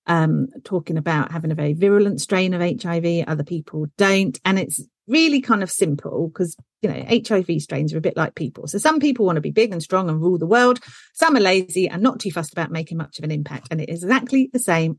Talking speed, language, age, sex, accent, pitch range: 245 wpm, English, 40-59, female, British, 160-210 Hz